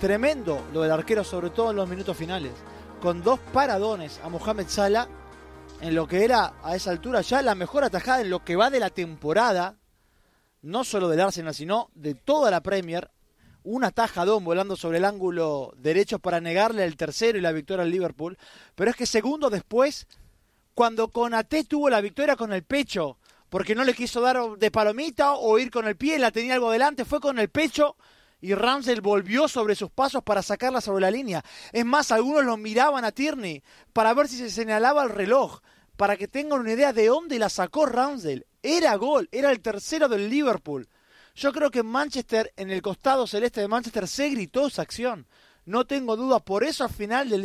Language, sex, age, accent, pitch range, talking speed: Spanish, male, 20-39, Argentinian, 185-250 Hz, 195 wpm